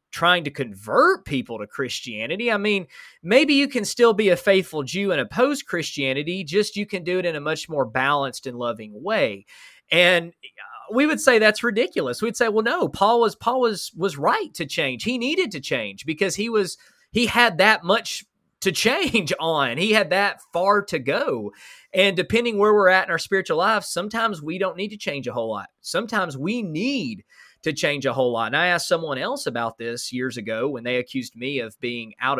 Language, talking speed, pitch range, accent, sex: English, 205 wpm, 130-205 Hz, American, male